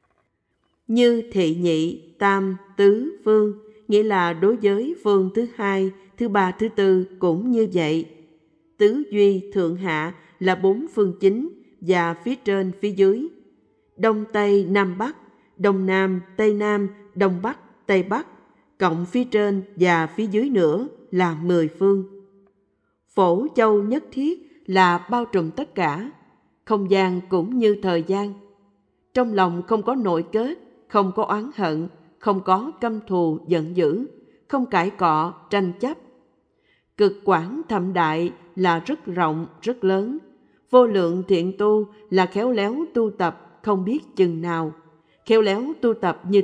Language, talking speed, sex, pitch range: Vietnamese, 150 wpm, female, 180-220 Hz